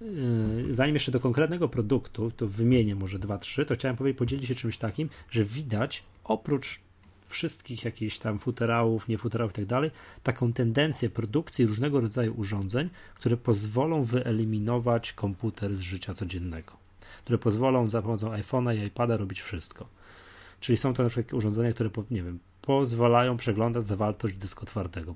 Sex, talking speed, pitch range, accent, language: male, 155 wpm, 100-125 Hz, native, Polish